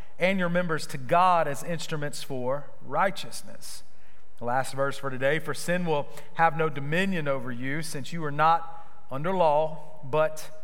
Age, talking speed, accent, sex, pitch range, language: 40-59, 165 wpm, American, male, 155-195 Hz, English